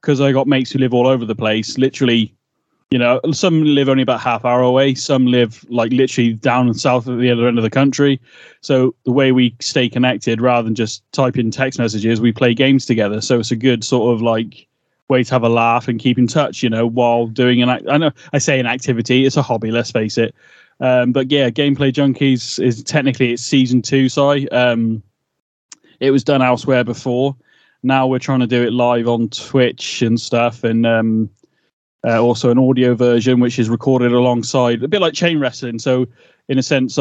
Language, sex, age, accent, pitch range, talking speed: English, male, 20-39, British, 120-130 Hz, 215 wpm